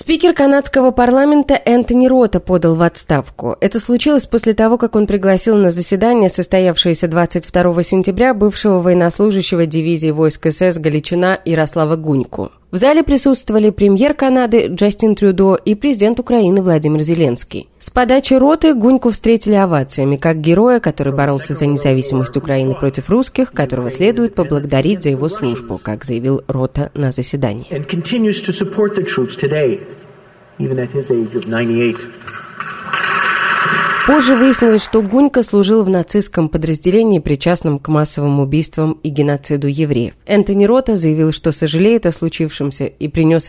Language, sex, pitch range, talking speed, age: Russian, female, 150-230 Hz, 125 wpm, 20-39